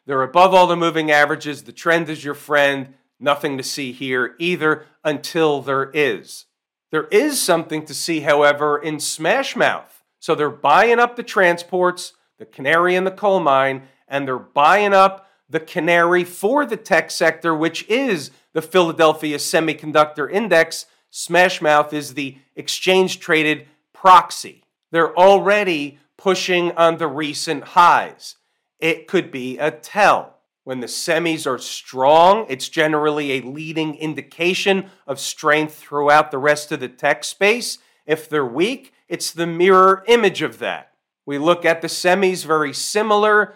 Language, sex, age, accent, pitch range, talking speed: English, male, 40-59, American, 145-180 Hz, 150 wpm